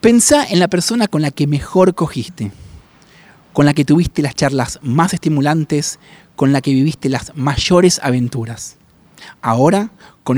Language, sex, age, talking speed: Spanish, male, 30-49, 150 wpm